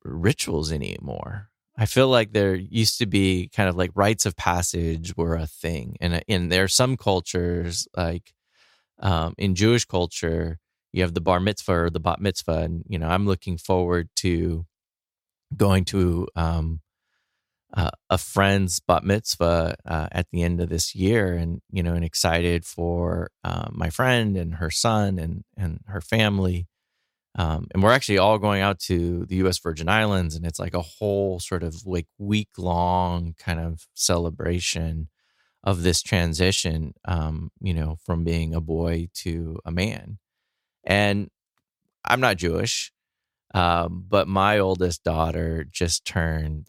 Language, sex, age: English, male, 20-39